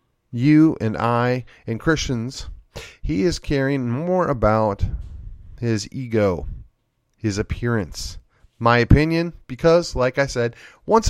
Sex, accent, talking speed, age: male, American, 115 wpm, 30-49